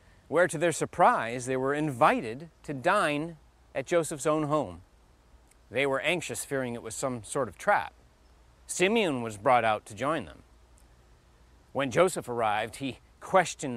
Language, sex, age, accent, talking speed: English, male, 30-49, American, 155 wpm